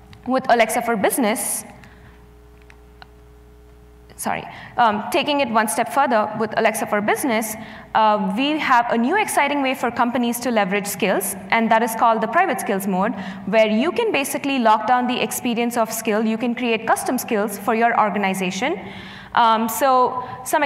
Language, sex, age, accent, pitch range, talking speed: English, female, 20-39, Indian, 210-250 Hz, 165 wpm